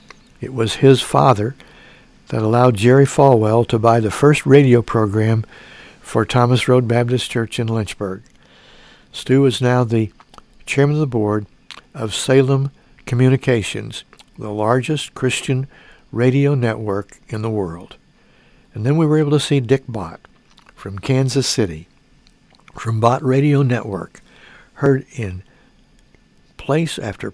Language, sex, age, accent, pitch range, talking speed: English, male, 60-79, American, 110-135 Hz, 130 wpm